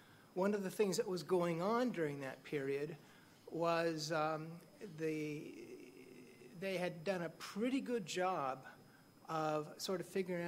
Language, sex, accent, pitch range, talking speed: English, male, American, 145-170 Hz, 145 wpm